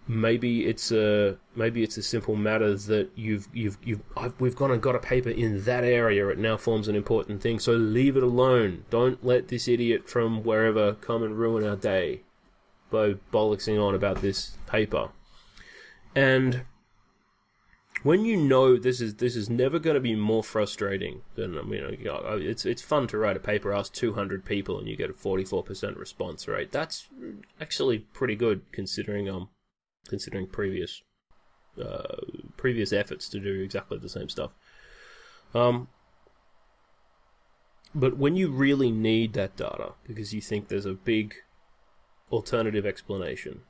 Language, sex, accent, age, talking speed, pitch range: English, male, Australian, 20-39, 160 wpm, 105-120 Hz